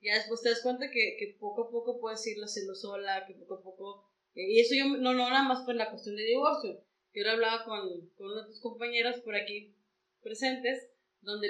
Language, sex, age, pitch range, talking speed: Spanish, female, 20-39, 190-240 Hz, 230 wpm